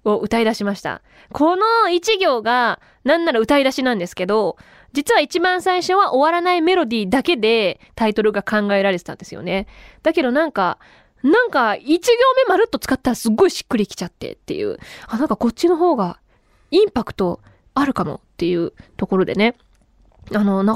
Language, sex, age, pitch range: Japanese, female, 20-39, 195-320 Hz